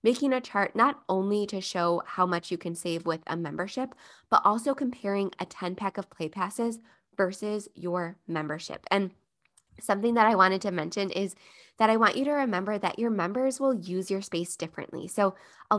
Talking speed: 190 wpm